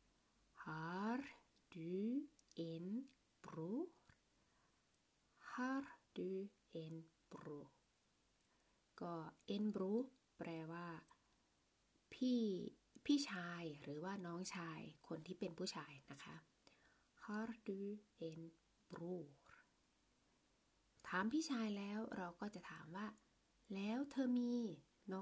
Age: 20-39